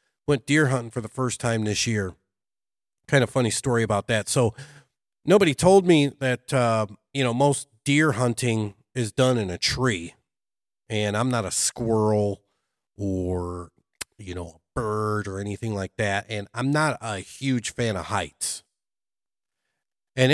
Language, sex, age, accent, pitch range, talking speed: English, male, 40-59, American, 105-130 Hz, 160 wpm